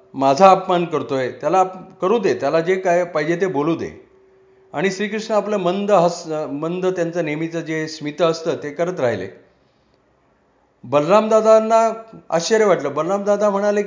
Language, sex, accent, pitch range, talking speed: Marathi, male, native, 155-190 Hz, 95 wpm